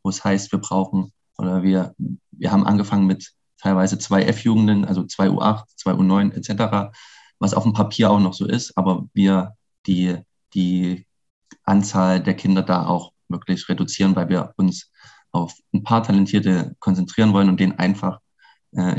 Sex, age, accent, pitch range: male, 20-39, German, 95-105 Hz